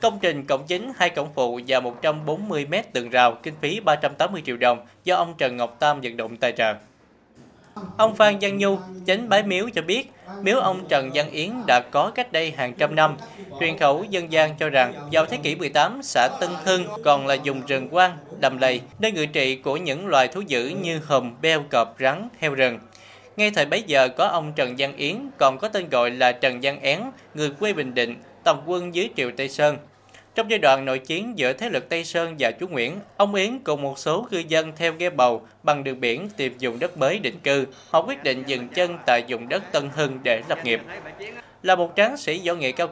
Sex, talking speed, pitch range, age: male, 225 wpm, 135-185 Hz, 20-39